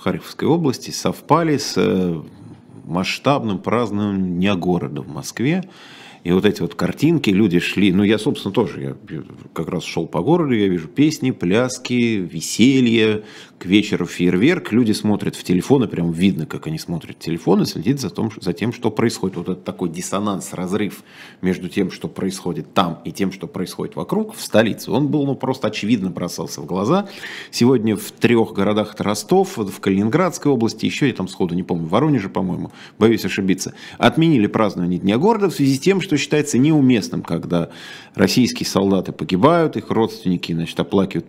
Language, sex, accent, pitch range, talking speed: Russian, male, native, 90-135 Hz, 170 wpm